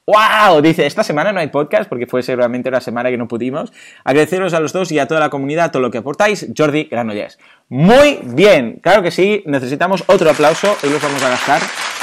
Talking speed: 215 wpm